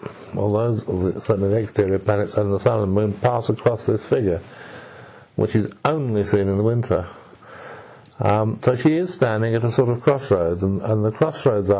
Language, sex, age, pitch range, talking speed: English, male, 60-79, 105-125 Hz, 190 wpm